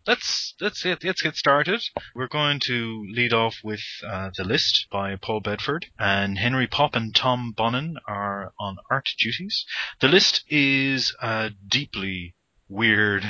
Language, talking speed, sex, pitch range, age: English, 150 wpm, male, 95-115 Hz, 30-49